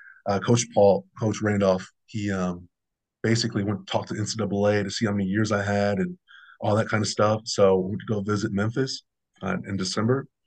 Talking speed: 205 wpm